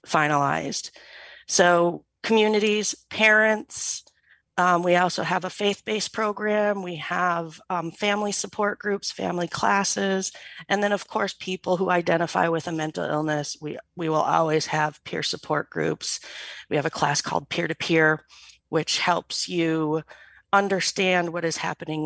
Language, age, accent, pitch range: English, 40-59, American, 160-195 Hz